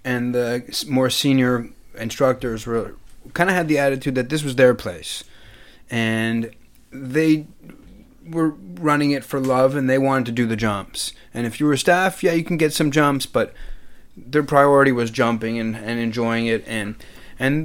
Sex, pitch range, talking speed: male, 110-135 Hz, 175 wpm